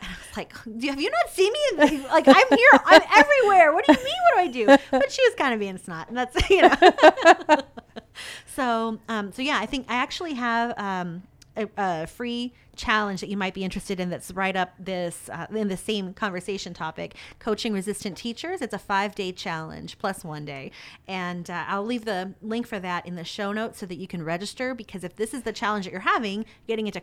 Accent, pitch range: American, 180-235 Hz